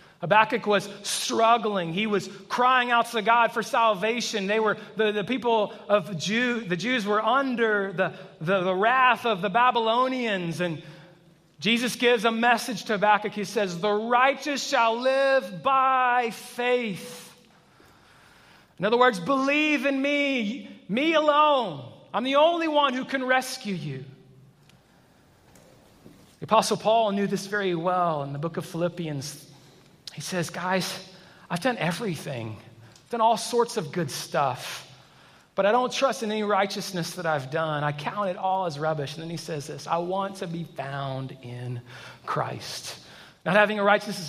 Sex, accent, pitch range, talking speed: male, American, 170-225 Hz, 160 wpm